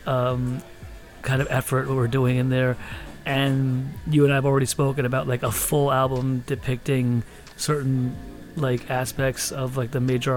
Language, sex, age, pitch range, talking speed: English, male, 30-49, 125-140 Hz, 160 wpm